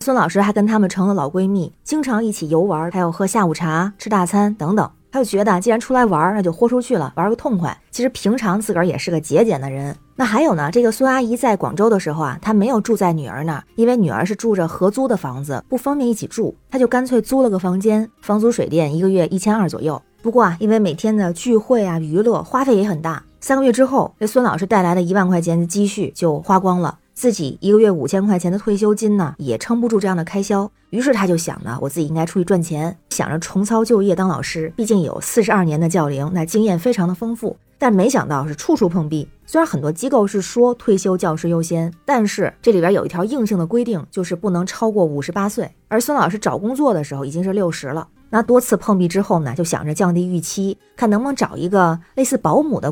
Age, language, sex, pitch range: 20-39, Chinese, female, 170-225 Hz